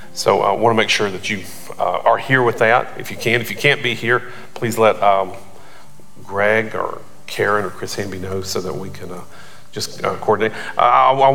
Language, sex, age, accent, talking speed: English, male, 40-59, American, 215 wpm